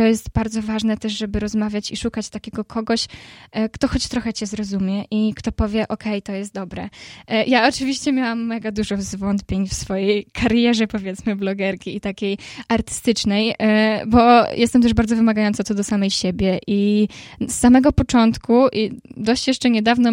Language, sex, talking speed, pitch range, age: Polish, female, 165 wpm, 205-235 Hz, 10-29